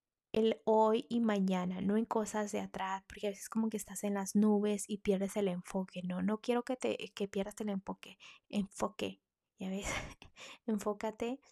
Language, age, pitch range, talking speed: Spanish, 20-39, 195-225 Hz, 190 wpm